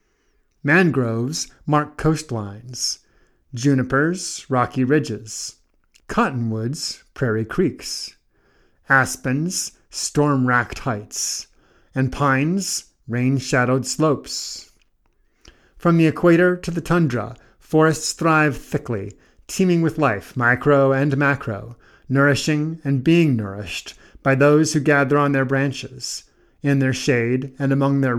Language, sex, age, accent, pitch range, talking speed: English, male, 50-69, American, 120-155 Hz, 100 wpm